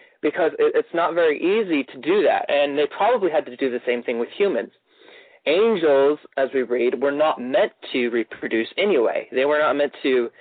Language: English